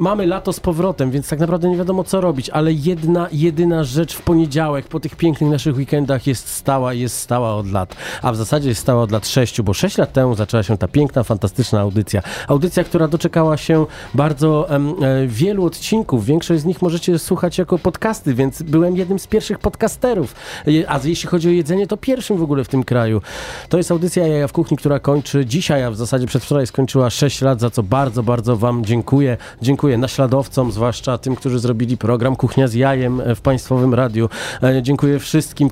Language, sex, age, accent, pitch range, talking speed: Polish, male, 40-59, native, 115-150 Hz, 195 wpm